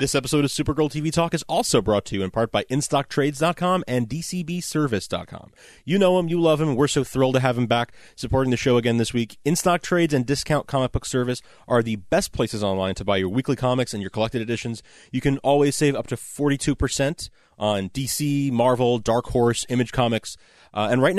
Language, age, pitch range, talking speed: English, 30-49, 110-145 Hz, 210 wpm